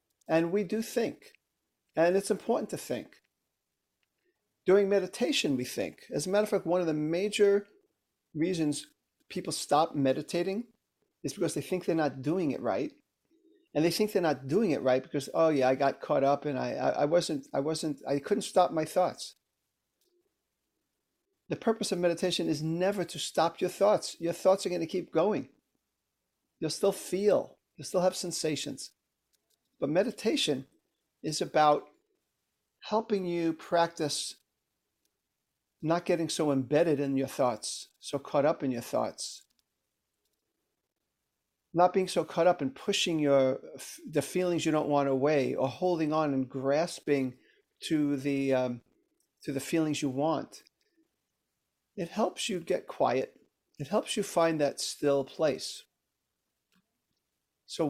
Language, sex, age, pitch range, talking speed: English, male, 40-59, 145-195 Hz, 150 wpm